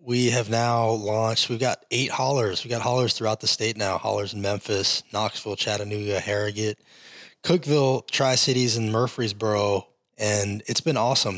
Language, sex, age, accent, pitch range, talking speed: English, male, 20-39, American, 105-120 Hz, 155 wpm